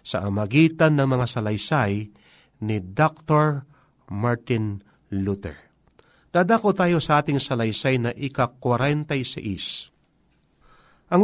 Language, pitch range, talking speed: Filipino, 115-165 Hz, 90 wpm